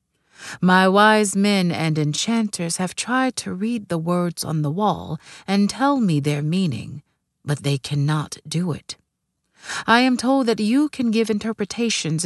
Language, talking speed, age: English, 155 wpm, 40-59